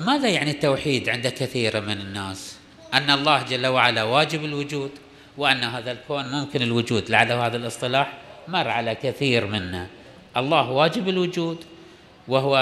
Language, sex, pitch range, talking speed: Arabic, male, 125-165 Hz, 140 wpm